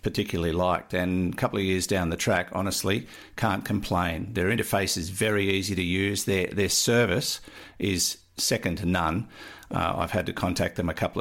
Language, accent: English, Australian